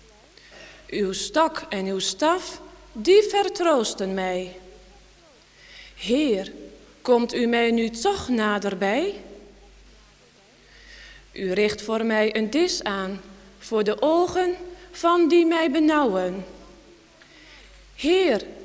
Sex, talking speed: female, 95 wpm